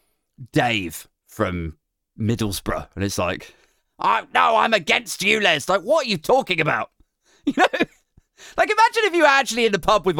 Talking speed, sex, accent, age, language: 180 wpm, male, British, 30-49, English